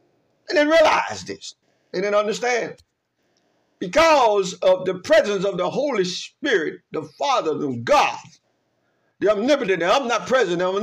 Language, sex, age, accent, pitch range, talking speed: English, male, 60-79, American, 150-245 Hz, 140 wpm